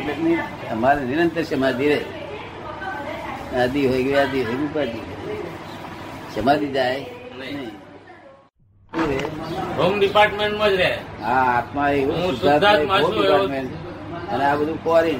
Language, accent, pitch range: Gujarati, native, 125-155 Hz